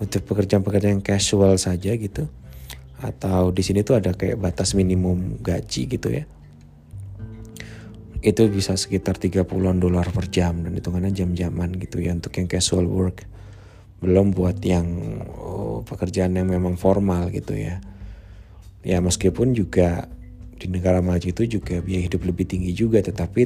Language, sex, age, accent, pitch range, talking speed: Indonesian, male, 20-39, native, 90-100 Hz, 145 wpm